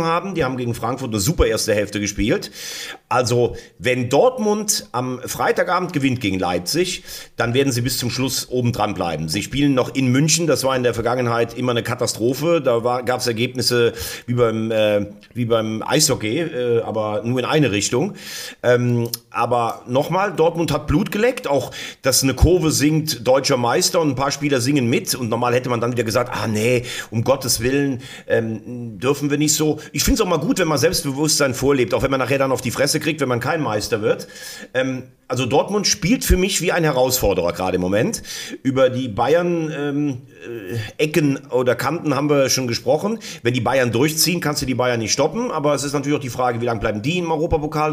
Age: 40-59